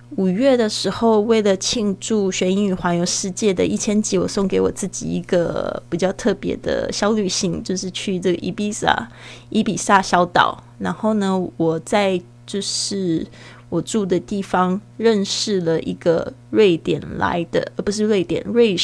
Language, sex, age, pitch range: Chinese, female, 20-39, 170-205 Hz